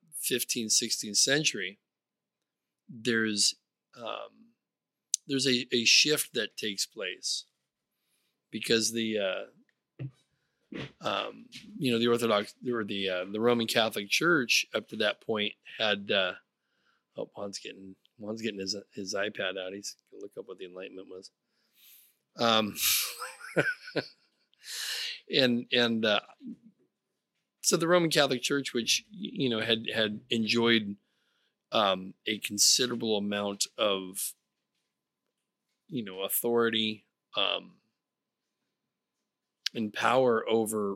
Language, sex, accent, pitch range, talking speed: English, male, American, 100-130 Hz, 115 wpm